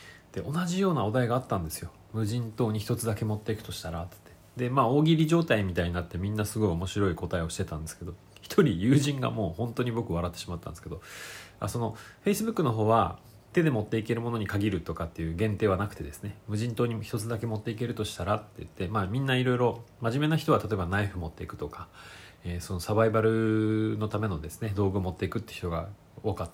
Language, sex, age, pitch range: Japanese, male, 30-49, 90-115 Hz